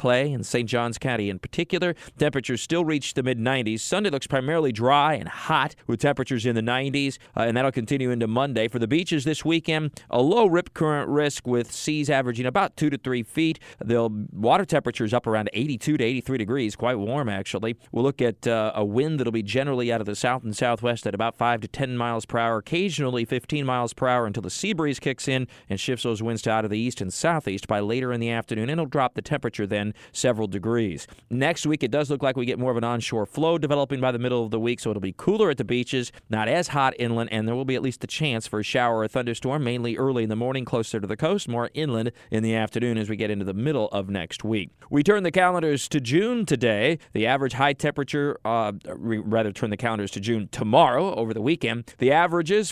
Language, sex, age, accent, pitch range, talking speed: English, male, 40-59, American, 115-145 Hz, 240 wpm